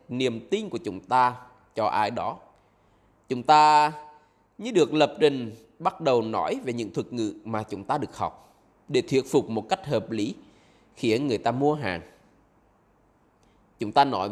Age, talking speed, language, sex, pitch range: 20-39, 170 wpm, Vietnamese, male, 110-150 Hz